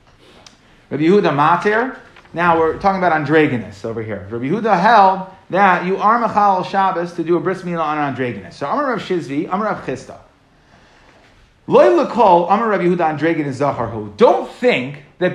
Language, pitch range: English, 155-210 Hz